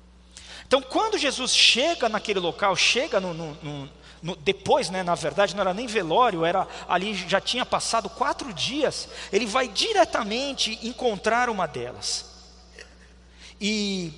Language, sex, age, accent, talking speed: Portuguese, male, 40-59, Brazilian, 140 wpm